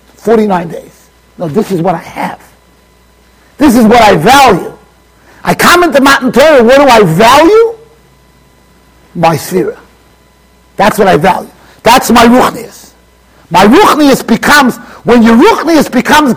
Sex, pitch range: male, 145-235 Hz